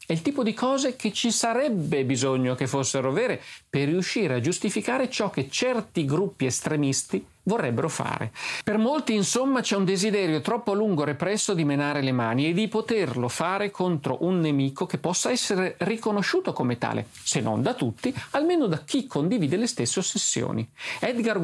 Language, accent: Italian, native